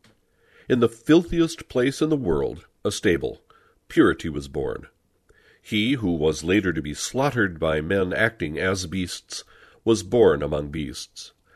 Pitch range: 80-110 Hz